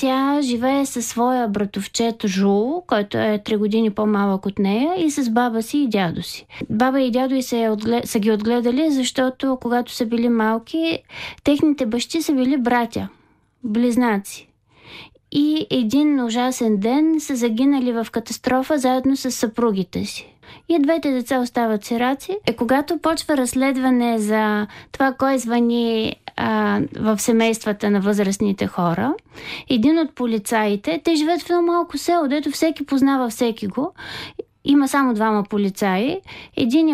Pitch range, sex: 220-275 Hz, female